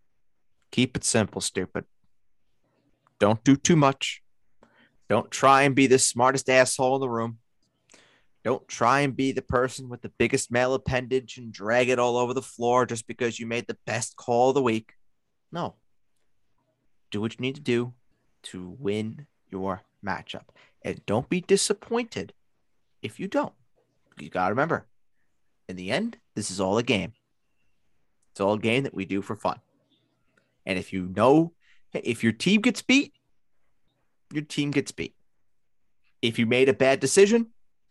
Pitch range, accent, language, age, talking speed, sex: 105-145 Hz, American, English, 30-49, 165 wpm, male